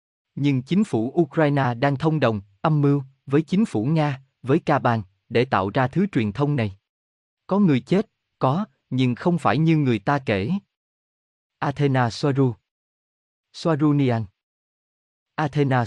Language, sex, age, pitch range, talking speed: Vietnamese, male, 20-39, 115-155 Hz, 140 wpm